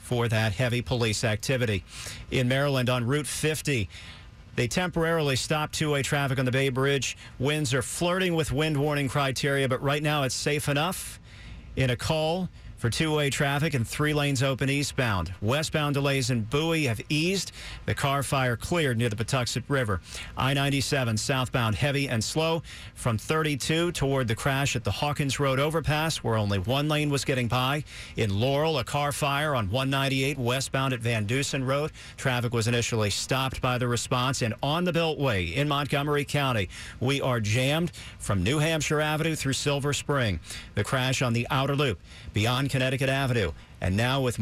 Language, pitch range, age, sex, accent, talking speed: English, 115-145 Hz, 50-69, male, American, 170 wpm